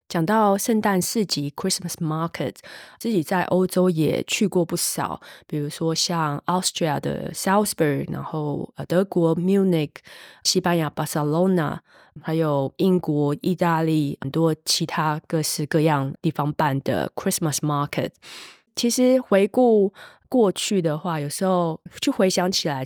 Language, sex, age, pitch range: Chinese, female, 20-39, 150-190 Hz